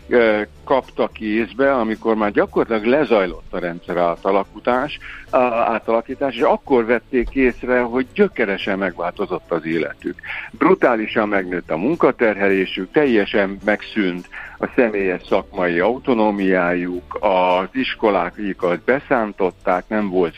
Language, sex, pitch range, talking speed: Hungarian, male, 90-115 Hz, 100 wpm